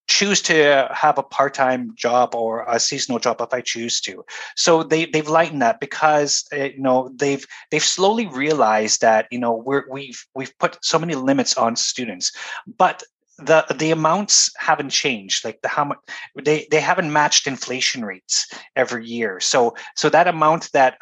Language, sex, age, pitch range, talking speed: English, male, 20-39, 120-155 Hz, 175 wpm